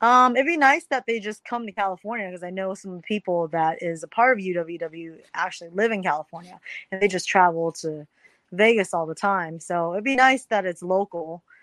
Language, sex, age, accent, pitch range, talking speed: English, female, 20-39, American, 170-210 Hz, 220 wpm